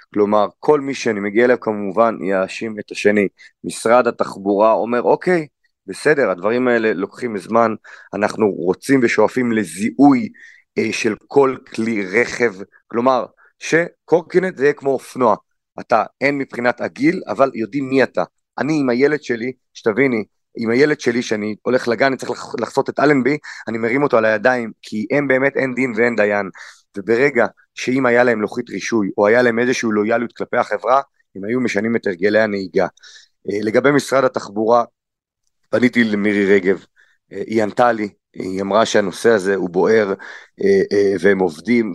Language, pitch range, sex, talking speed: Hebrew, 110-135 Hz, male, 155 wpm